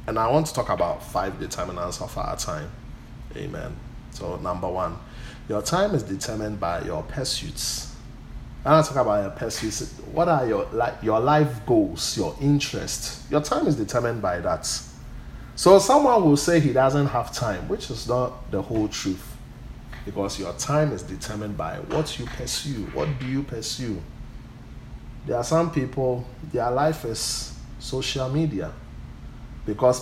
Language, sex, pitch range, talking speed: English, male, 120-155 Hz, 160 wpm